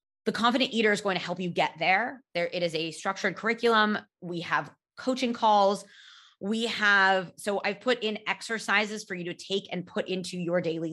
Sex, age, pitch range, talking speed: female, 20-39, 170-225 Hz, 200 wpm